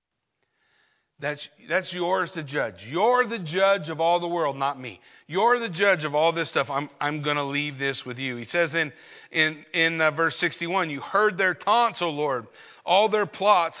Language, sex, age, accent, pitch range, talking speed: English, male, 40-59, American, 135-180 Hz, 195 wpm